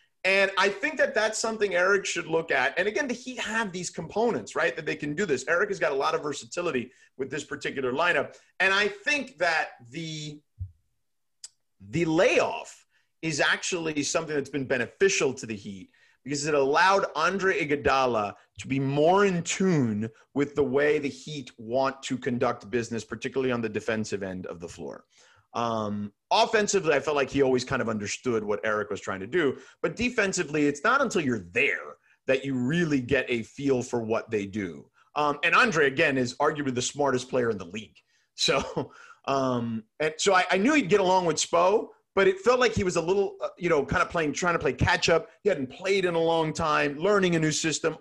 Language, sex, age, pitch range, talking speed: English, male, 30-49, 130-190 Hz, 200 wpm